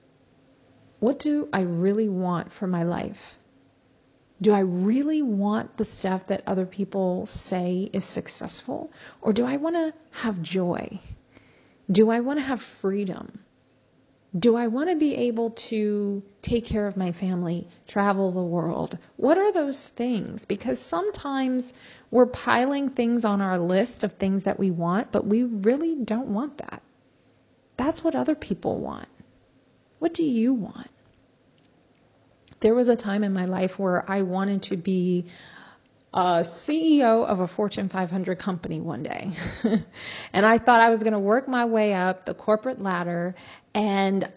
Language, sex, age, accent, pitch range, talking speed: English, female, 30-49, American, 185-235 Hz, 155 wpm